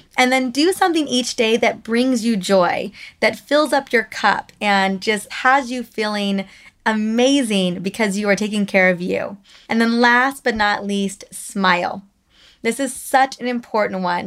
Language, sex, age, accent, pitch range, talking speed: English, female, 20-39, American, 195-250 Hz, 175 wpm